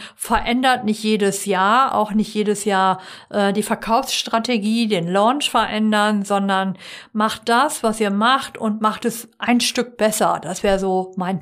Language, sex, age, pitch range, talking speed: German, female, 50-69, 200-255 Hz, 160 wpm